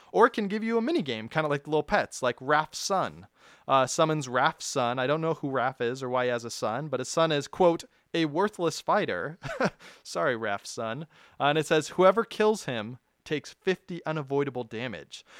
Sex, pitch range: male, 130-175 Hz